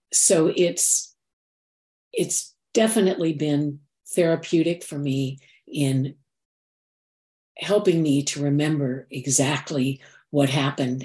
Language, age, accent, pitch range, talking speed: English, 60-79, American, 145-195 Hz, 85 wpm